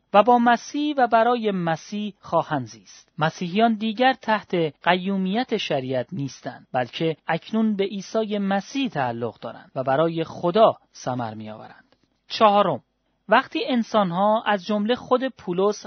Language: Persian